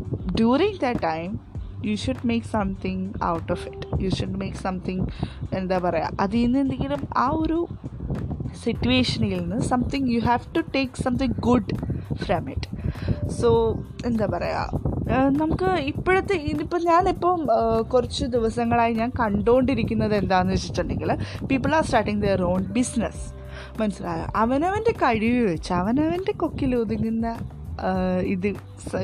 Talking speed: 100 wpm